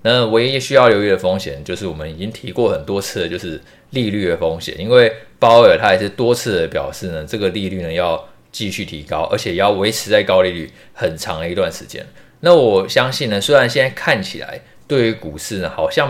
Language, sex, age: Chinese, male, 20-39